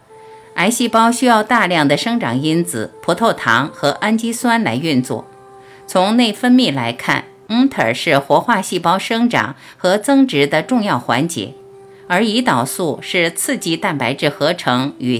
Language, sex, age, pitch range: Chinese, female, 50-69, 140-230 Hz